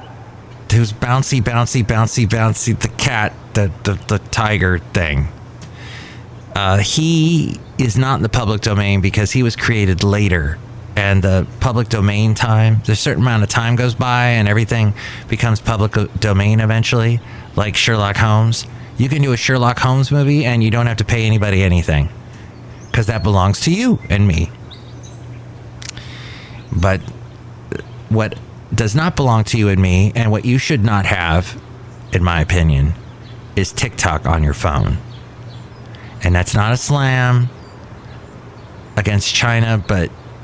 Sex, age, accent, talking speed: male, 30-49, American, 150 wpm